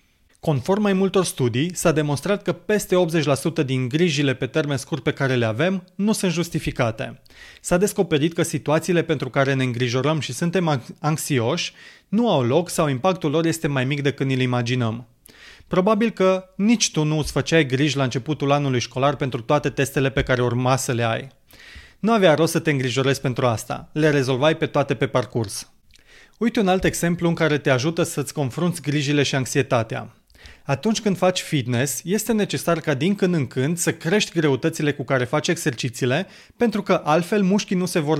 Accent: native